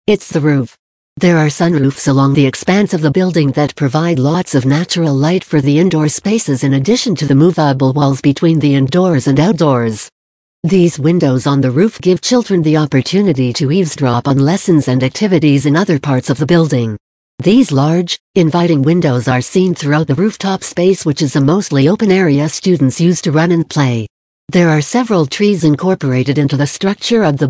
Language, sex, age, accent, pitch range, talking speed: English, female, 60-79, American, 140-185 Hz, 190 wpm